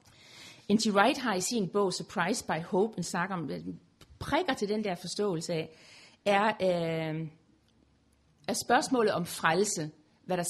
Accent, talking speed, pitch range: native, 145 wpm, 165-220 Hz